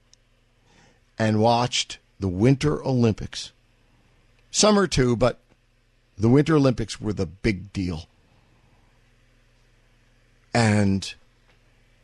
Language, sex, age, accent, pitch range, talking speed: English, male, 50-69, American, 105-130 Hz, 80 wpm